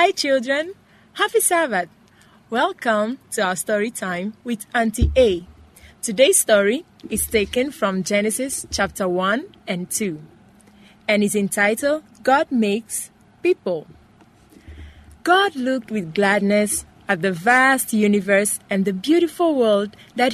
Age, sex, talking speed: 30-49, female, 120 wpm